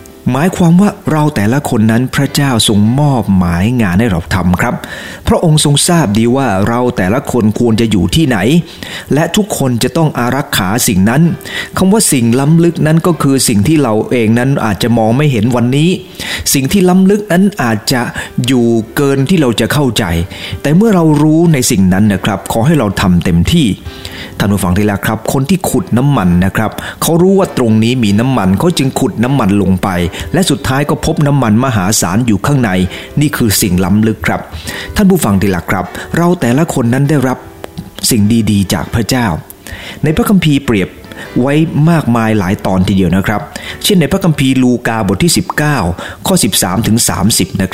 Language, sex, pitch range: English, male, 105-150 Hz